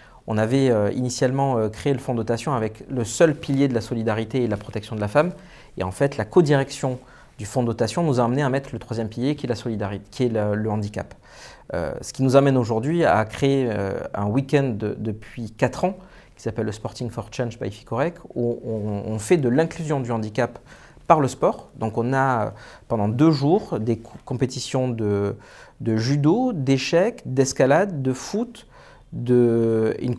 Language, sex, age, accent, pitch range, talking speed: French, male, 40-59, French, 110-140 Hz, 185 wpm